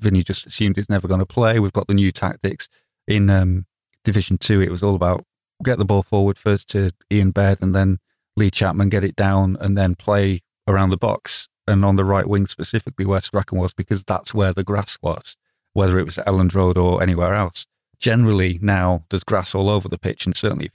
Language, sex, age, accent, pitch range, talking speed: English, male, 30-49, British, 95-105 Hz, 225 wpm